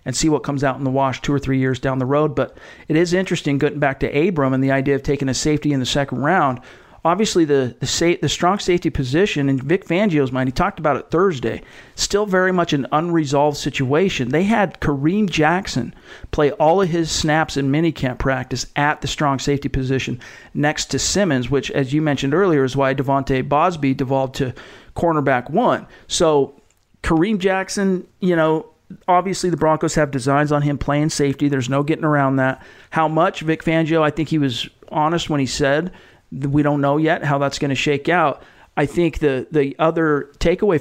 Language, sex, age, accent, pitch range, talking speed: English, male, 40-59, American, 135-165 Hz, 200 wpm